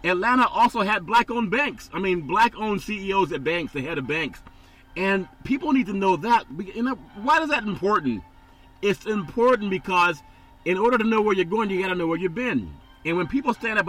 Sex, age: male, 40-59